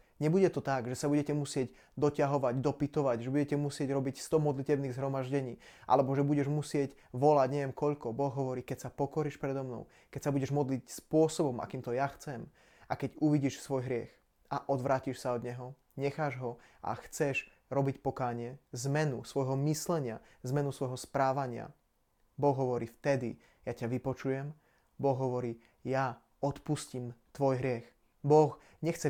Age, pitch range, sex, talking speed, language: 20-39, 130-145 Hz, male, 155 wpm, Slovak